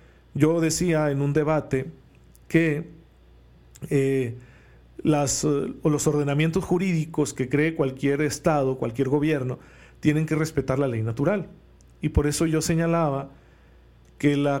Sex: male